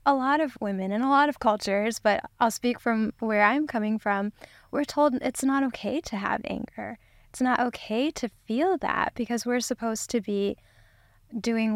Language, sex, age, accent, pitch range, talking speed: English, female, 10-29, American, 205-240 Hz, 190 wpm